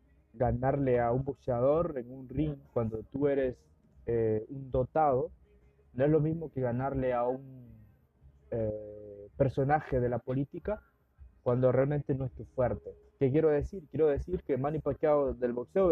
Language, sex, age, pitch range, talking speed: Spanish, male, 20-39, 115-150 Hz, 160 wpm